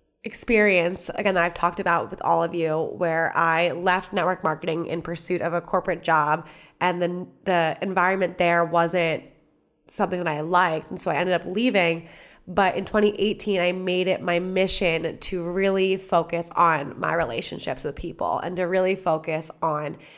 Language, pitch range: English, 170-190 Hz